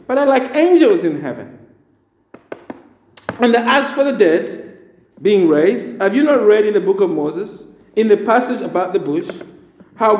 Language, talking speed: English, 170 wpm